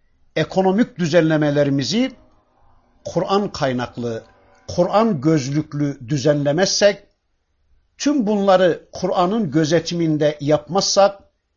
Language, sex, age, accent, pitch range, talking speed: Turkish, male, 60-79, native, 115-175 Hz, 60 wpm